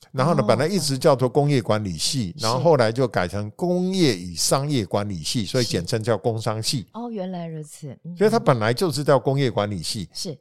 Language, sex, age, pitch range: Chinese, male, 50-69, 105-155 Hz